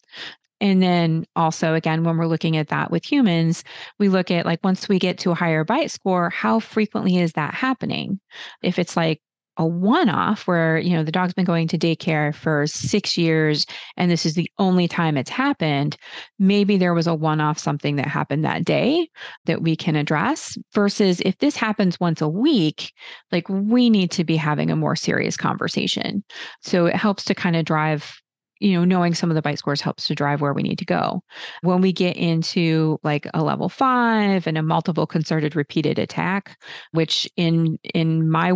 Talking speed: 195 wpm